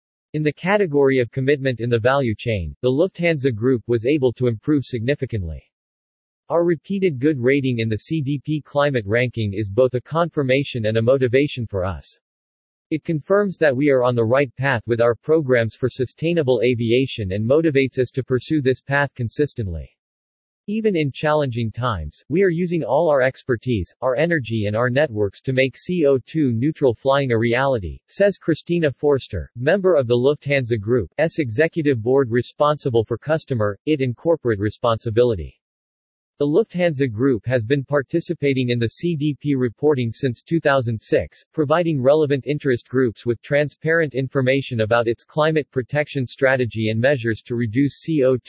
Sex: male